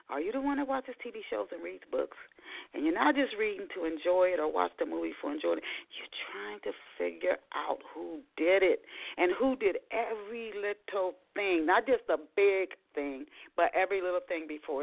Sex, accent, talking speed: female, American, 200 wpm